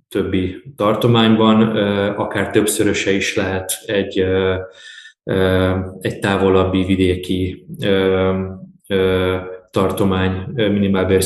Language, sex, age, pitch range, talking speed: Hungarian, male, 20-39, 95-110 Hz, 65 wpm